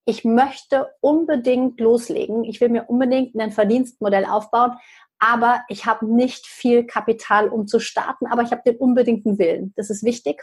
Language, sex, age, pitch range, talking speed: German, female, 30-49, 210-250 Hz, 165 wpm